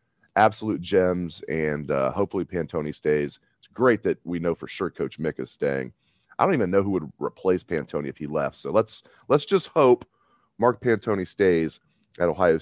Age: 30-49